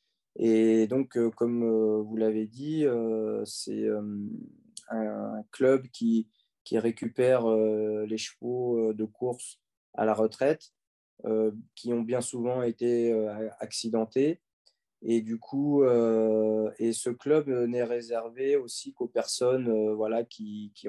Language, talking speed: French, 110 wpm